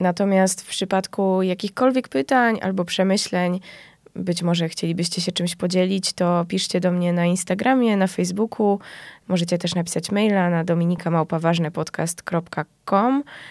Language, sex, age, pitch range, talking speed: Polish, female, 20-39, 175-200 Hz, 120 wpm